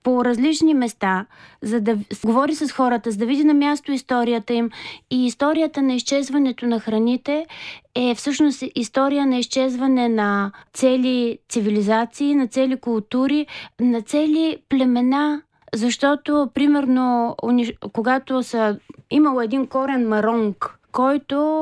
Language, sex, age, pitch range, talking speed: Bulgarian, female, 20-39, 235-290 Hz, 125 wpm